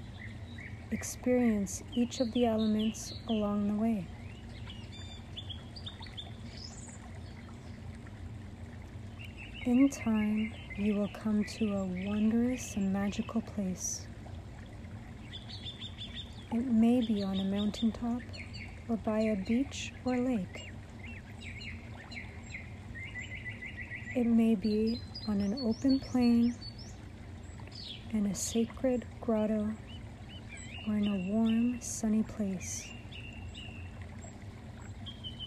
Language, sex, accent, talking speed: English, female, American, 80 wpm